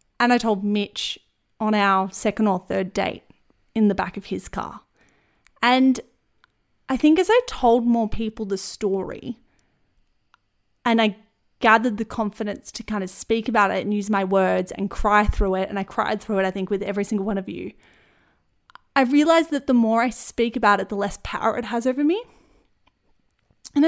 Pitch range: 220-295 Hz